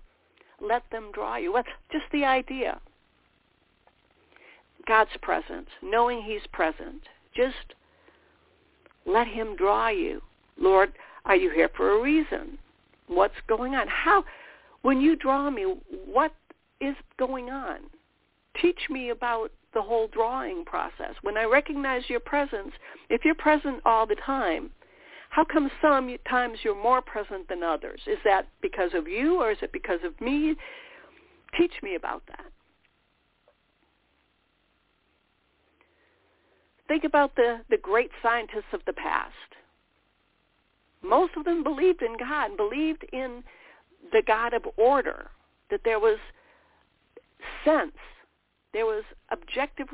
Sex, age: female, 60-79